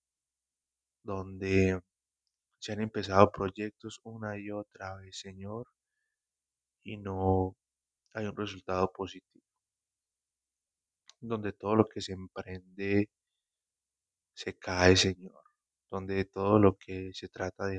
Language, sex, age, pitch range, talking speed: Spanish, male, 20-39, 65-100 Hz, 110 wpm